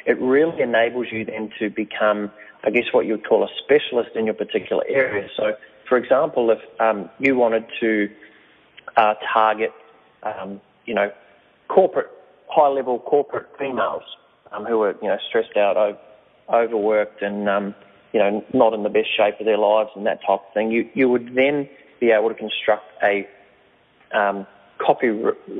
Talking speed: 175 wpm